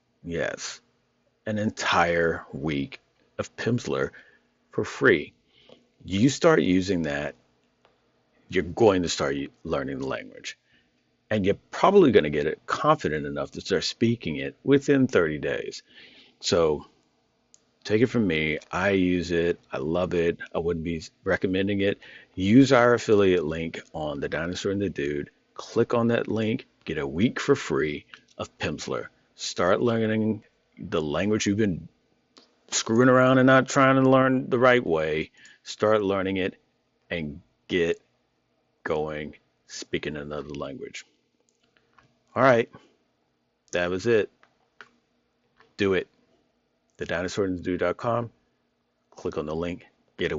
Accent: American